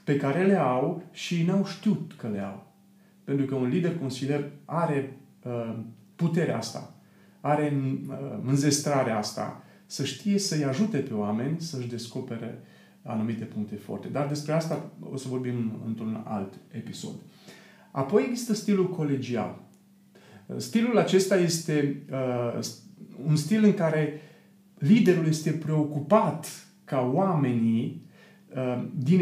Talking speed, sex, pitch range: 125 wpm, male, 130-180 Hz